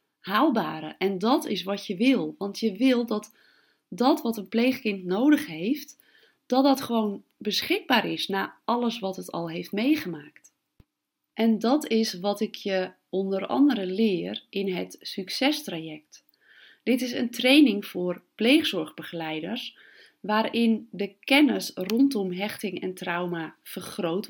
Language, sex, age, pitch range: Dutch, female, 30-49, 185-250 Hz